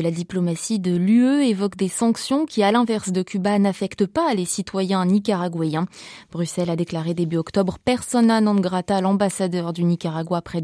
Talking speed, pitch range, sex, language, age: 175 wpm, 185-245 Hz, female, French, 20-39